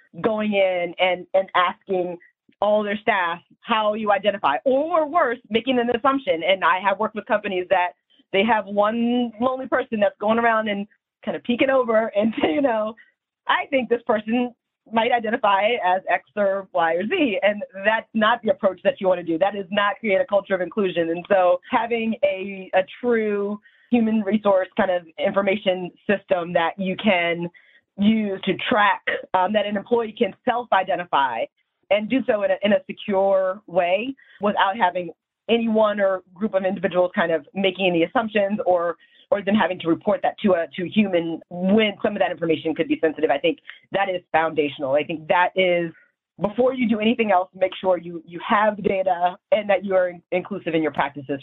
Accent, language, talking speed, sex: American, English, 195 wpm, female